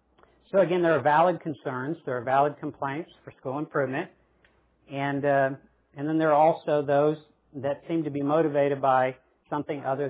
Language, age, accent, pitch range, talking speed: English, 50-69, American, 120-155 Hz, 170 wpm